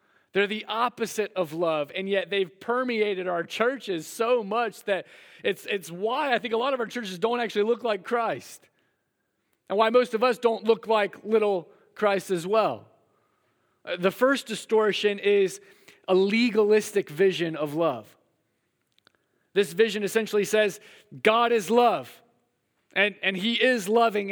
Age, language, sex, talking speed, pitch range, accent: 30-49, English, male, 155 wpm, 175-220 Hz, American